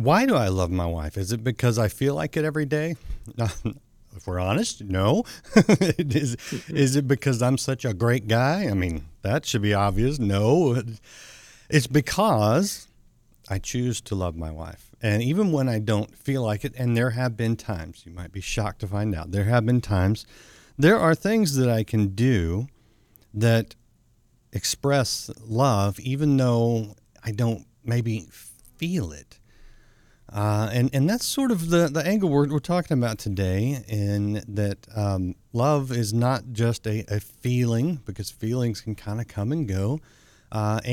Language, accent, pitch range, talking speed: English, American, 105-135 Hz, 170 wpm